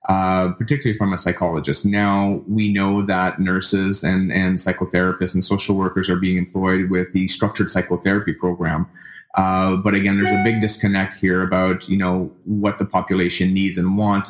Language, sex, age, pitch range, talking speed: English, male, 30-49, 95-105 Hz, 170 wpm